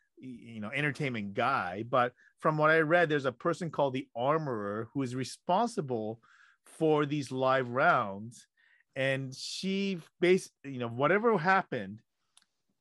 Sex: male